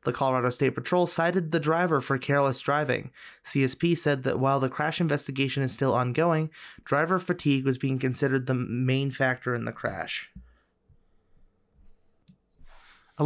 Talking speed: 145 wpm